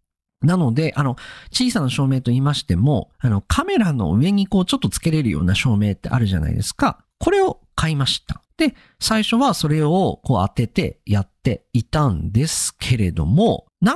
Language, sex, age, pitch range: Japanese, male, 40-59, 120-200 Hz